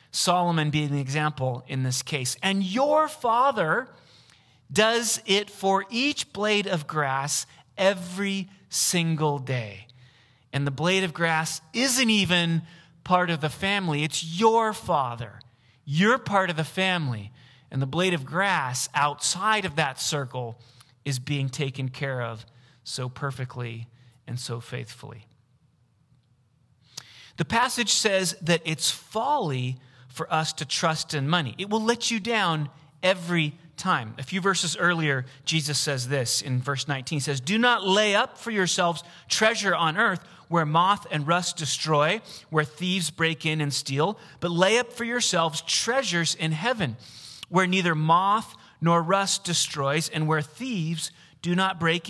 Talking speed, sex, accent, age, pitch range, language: 150 wpm, male, American, 30-49, 135-185 Hz, English